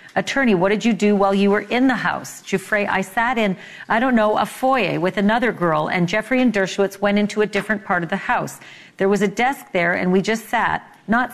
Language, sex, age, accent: English, female, 40-59, American